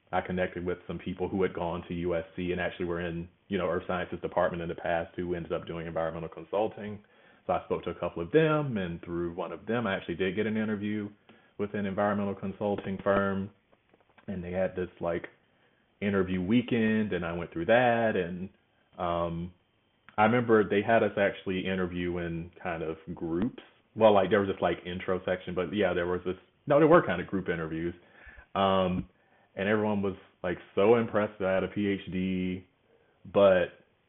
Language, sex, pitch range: English, male, 90-105 Hz